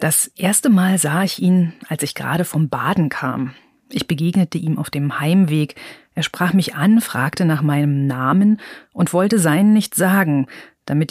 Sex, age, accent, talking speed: female, 30-49, German, 175 wpm